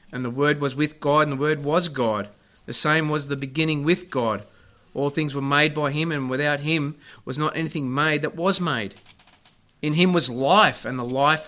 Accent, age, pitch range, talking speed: Australian, 30-49, 120-155 Hz, 215 wpm